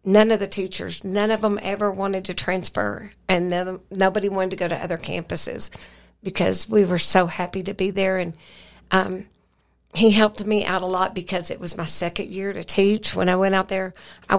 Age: 60-79